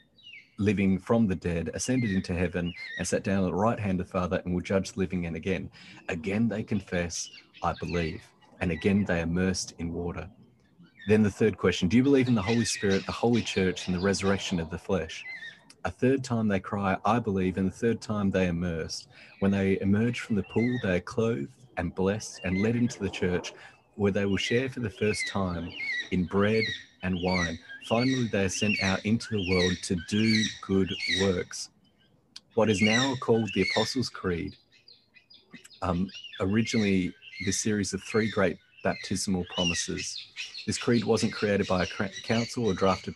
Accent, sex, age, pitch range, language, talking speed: Australian, male, 30-49, 90-110 Hz, English, 185 wpm